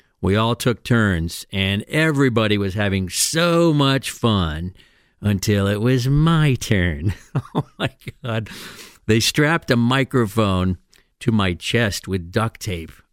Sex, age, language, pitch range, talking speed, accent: male, 50-69, English, 100-130 Hz, 135 wpm, American